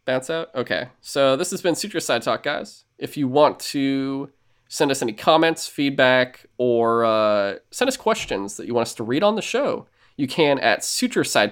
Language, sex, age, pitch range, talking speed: English, male, 20-39, 105-135 Hz, 200 wpm